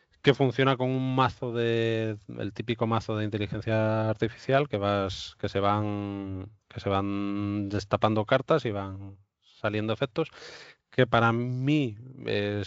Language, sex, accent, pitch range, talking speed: Spanish, male, Spanish, 95-115 Hz, 140 wpm